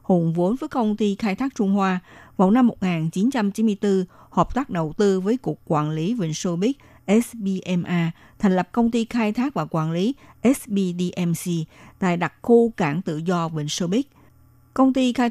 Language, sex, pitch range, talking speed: Vietnamese, female, 170-230 Hz, 180 wpm